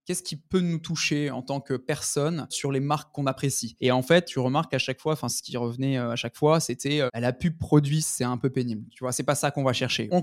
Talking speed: 275 wpm